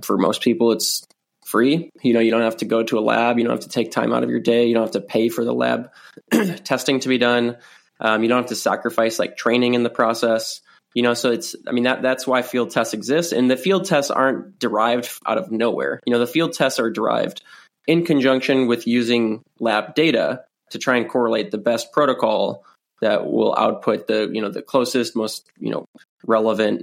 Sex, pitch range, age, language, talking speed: male, 115-130 Hz, 20-39, English, 225 wpm